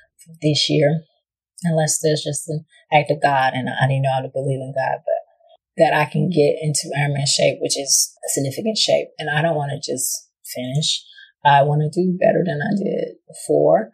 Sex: female